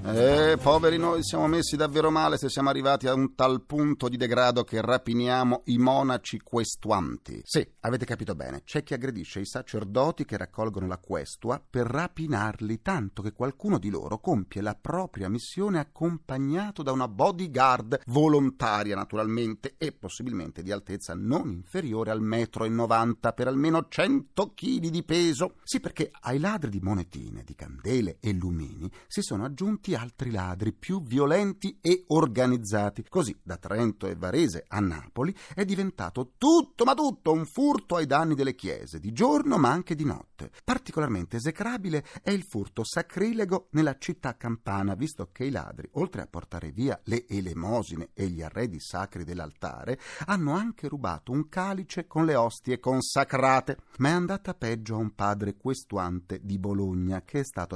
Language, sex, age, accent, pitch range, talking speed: Italian, male, 40-59, native, 105-160 Hz, 160 wpm